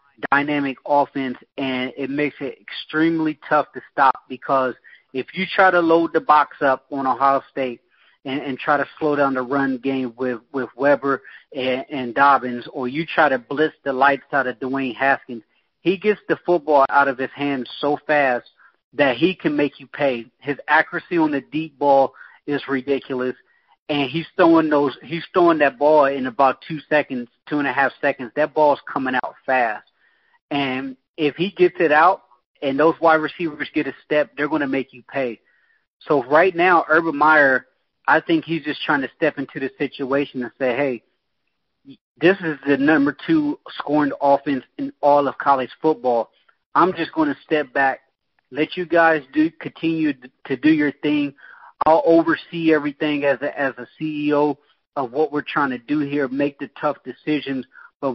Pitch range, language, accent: 135-155 Hz, English, American